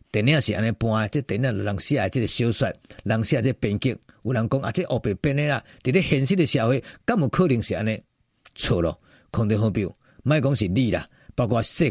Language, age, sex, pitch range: Chinese, 50-69, male, 120-180 Hz